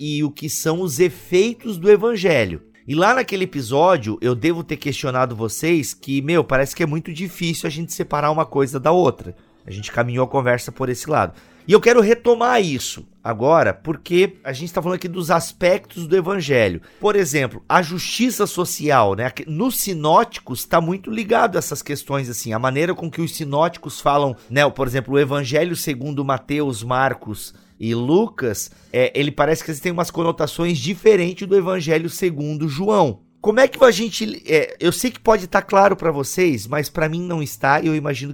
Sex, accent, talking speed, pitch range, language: male, Brazilian, 185 wpm, 130-180 Hz, Portuguese